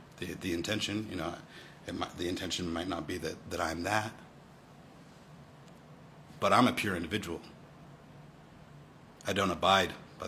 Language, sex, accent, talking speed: English, male, American, 145 wpm